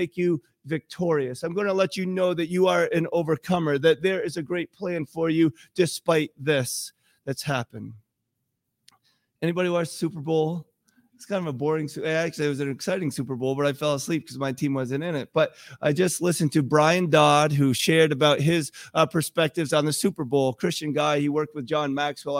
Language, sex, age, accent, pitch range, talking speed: English, male, 30-49, American, 150-195 Hz, 205 wpm